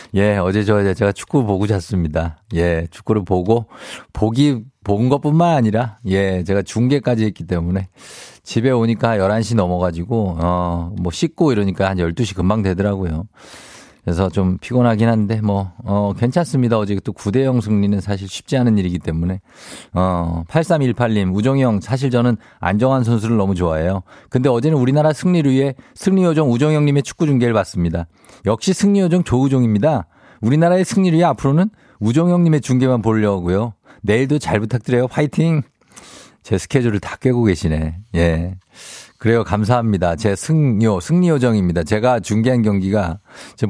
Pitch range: 95-135 Hz